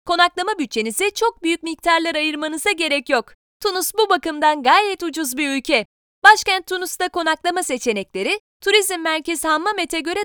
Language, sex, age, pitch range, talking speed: Turkish, female, 30-49, 295-390 Hz, 135 wpm